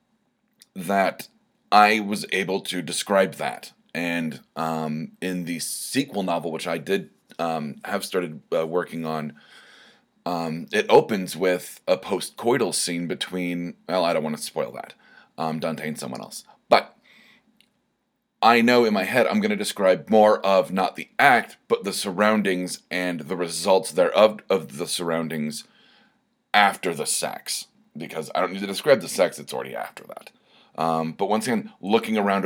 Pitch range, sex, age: 85-105 Hz, male, 30-49